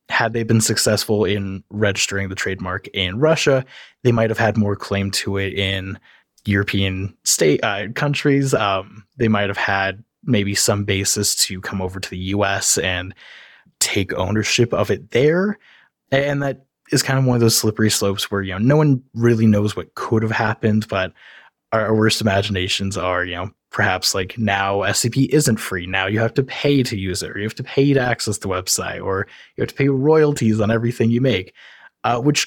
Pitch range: 100-120 Hz